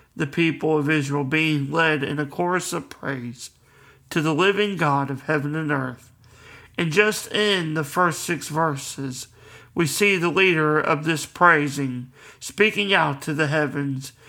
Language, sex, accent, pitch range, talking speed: English, male, American, 140-170 Hz, 160 wpm